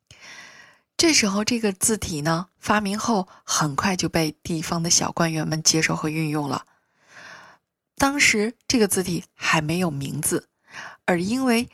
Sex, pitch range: female, 155-215 Hz